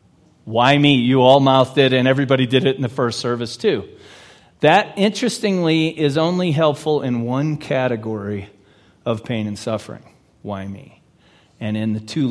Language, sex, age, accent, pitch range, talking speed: English, male, 40-59, American, 125-180 Hz, 160 wpm